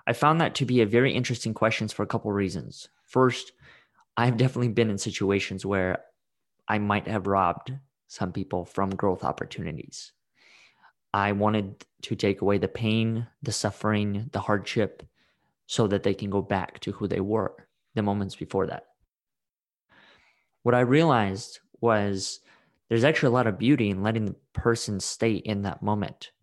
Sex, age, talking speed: male, 20-39, 165 wpm